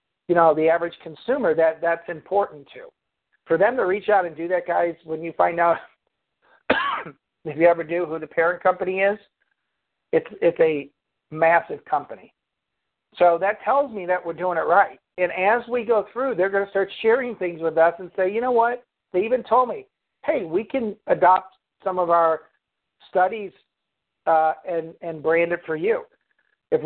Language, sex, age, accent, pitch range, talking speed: English, male, 50-69, American, 160-200 Hz, 185 wpm